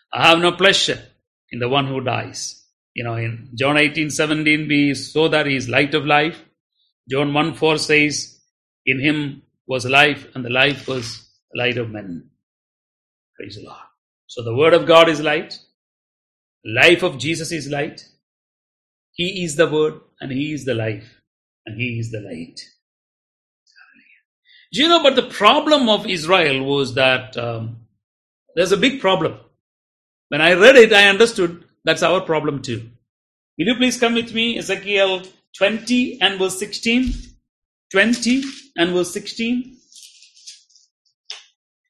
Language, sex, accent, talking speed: English, male, Indian, 155 wpm